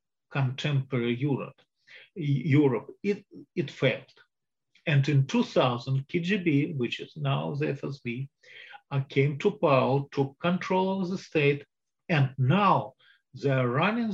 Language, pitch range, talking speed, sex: English, 135-175 Hz, 120 wpm, male